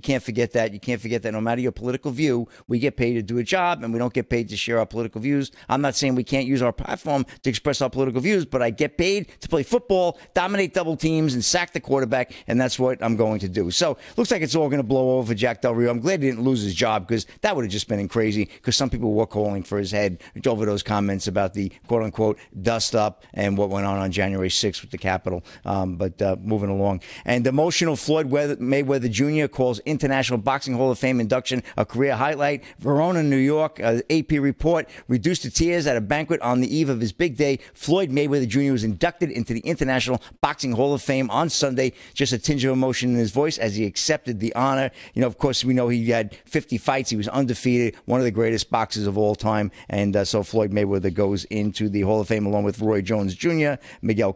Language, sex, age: English, male, 50-69